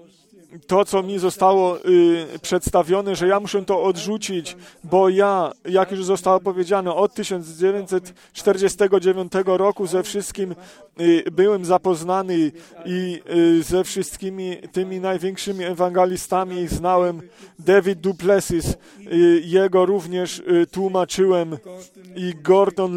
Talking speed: 110 wpm